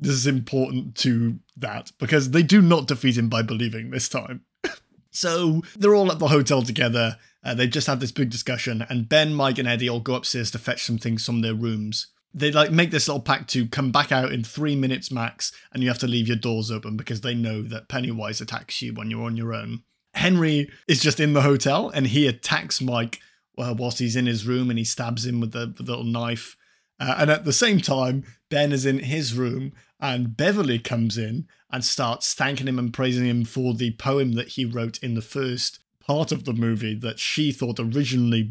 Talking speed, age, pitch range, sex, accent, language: 220 wpm, 20-39, 115-140 Hz, male, British, English